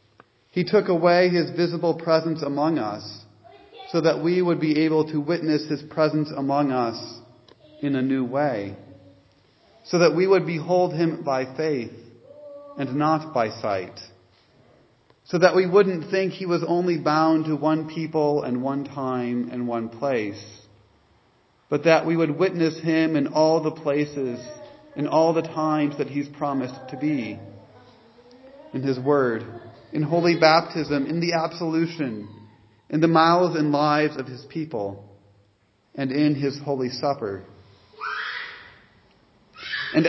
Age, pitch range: 40-59, 125-165 Hz